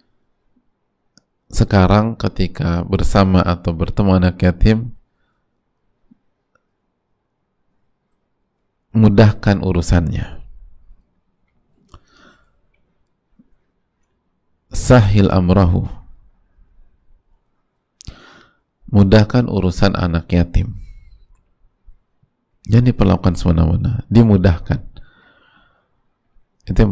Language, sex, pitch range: Indonesian, male, 90-105 Hz